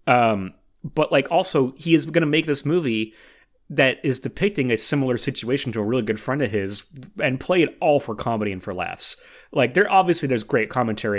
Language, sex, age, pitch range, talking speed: English, male, 30-49, 105-140 Hz, 205 wpm